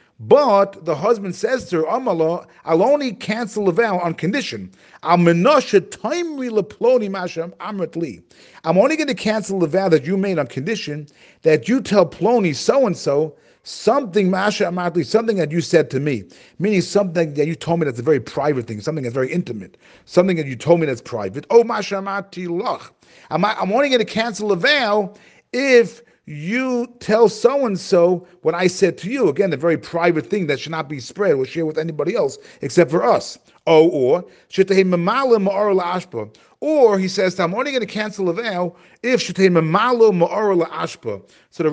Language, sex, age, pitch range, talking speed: English, male, 40-59, 160-215 Hz, 165 wpm